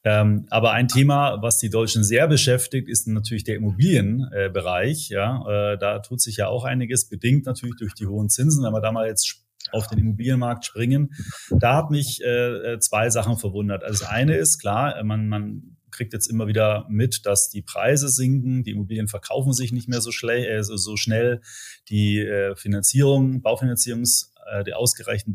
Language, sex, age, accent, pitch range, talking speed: German, male, 30-49, German, 105-125 Hz, 170 wpm